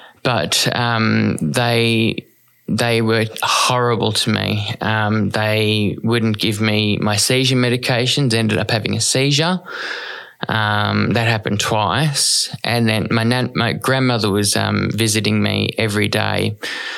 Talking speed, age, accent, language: 130 wpm, 20-39, Australian, English